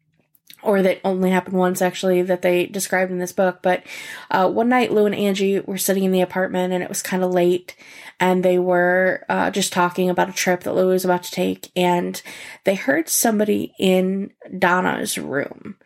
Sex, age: female, 10-29